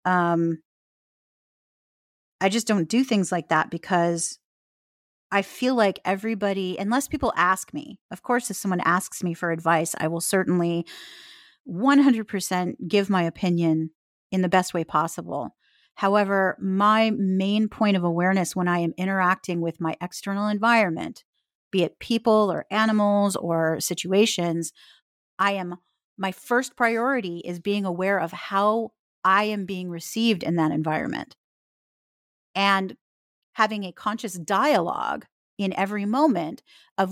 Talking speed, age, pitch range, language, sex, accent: 135 wpm, 30-49, 170-215 Hz, English, female, American